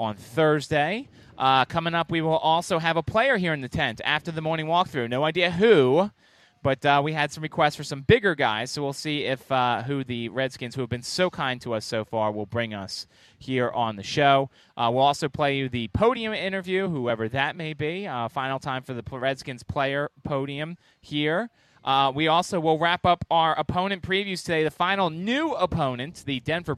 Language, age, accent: English, 30-49, American